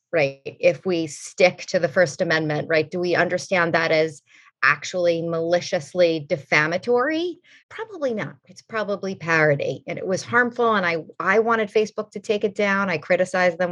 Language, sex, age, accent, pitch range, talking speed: English, female, 30-49, American, 175-225 Hz, 165 wpm